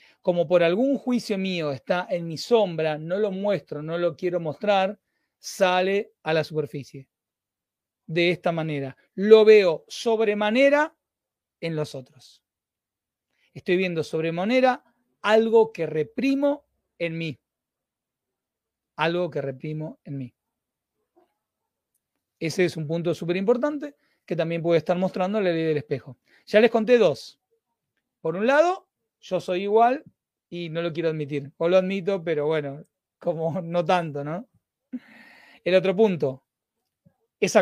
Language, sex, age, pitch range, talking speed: Spanish, male, 40-59, 160-210 Hz, 135 wpm